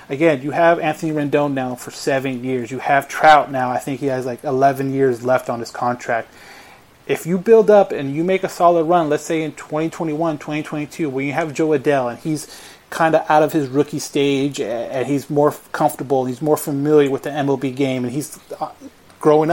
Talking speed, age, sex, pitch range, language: 205 wpm, 30-49, male, 135-155 Hz, English